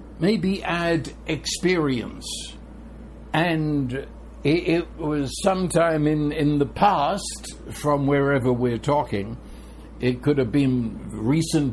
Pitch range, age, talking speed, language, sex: 130-170 Hz, 60-79, 105 wpm, English, male